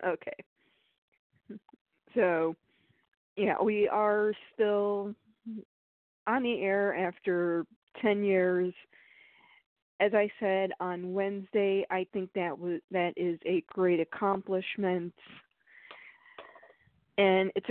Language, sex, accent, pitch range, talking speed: English, female, American, 185-205 Hz, 95 wpm